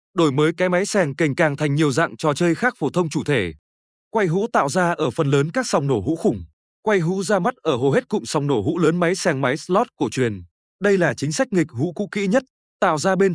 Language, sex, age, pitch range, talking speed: Vietnamese, male, 20-39, 145-195 Hz, 265 wpm